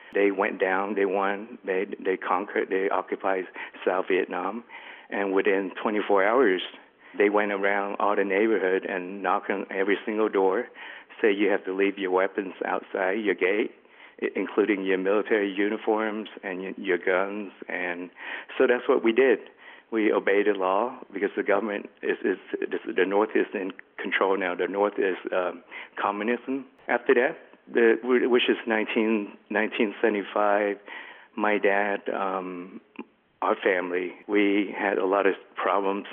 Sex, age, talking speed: male, 60-79, 150 wpm